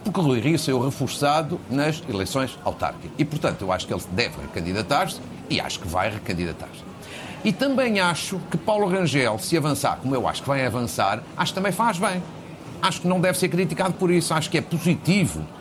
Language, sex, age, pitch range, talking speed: Portuguese, male, 50-69, 140-195 Hz, 205 wpm